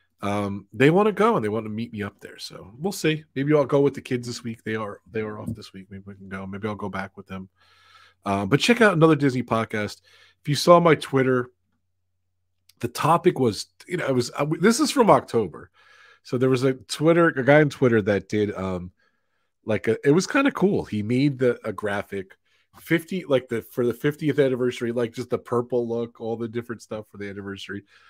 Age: 30-49